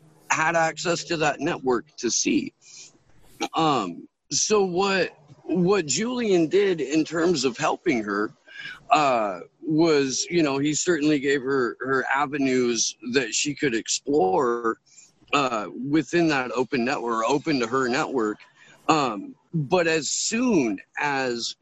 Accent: American